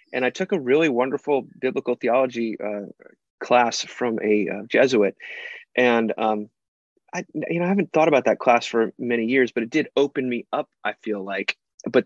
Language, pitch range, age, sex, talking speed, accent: English, 110-130 Hz, 30-49, male, 190 wpm, American